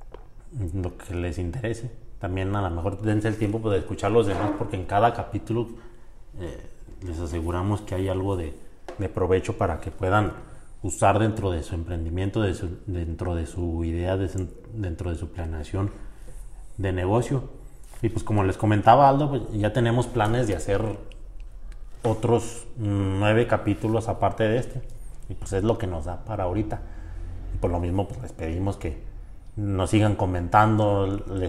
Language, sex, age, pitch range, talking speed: Spanish, male, 30-49, 95-110 Hz, 170 wpm